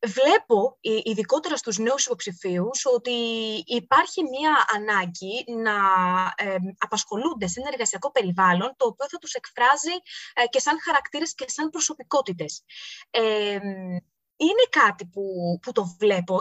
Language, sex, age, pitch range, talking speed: Greek, female, 20-39, 190-285 Hz, 115 wpm